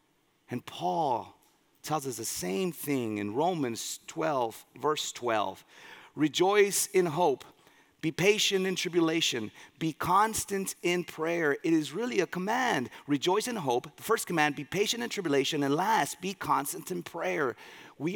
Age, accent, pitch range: 40-59, American, 135-195 Hz